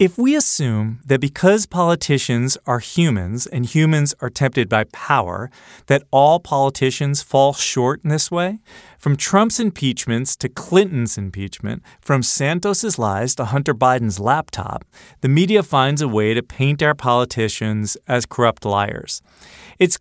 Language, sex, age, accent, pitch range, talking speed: English, male, 40-59, American, 115-160 Hz, 145 wpm